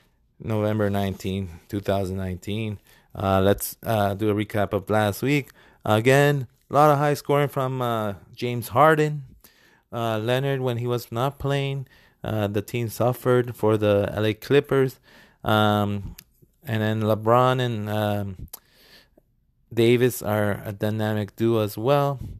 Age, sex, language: 20-39, male, English